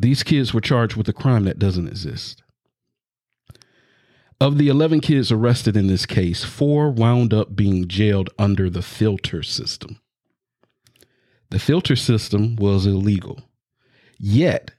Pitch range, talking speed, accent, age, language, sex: 100-130 Hz, 135 wpm, American, 40-59, English, male